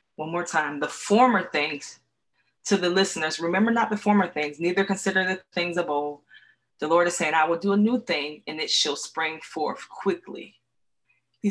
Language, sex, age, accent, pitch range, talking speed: English, female, 20-39, American, 160-200 Hz, 195 wpm